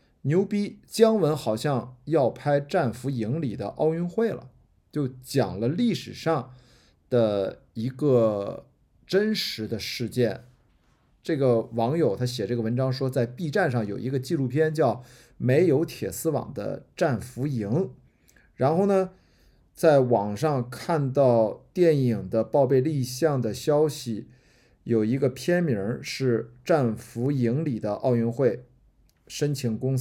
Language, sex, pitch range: Chinese, male, 115-150 Hz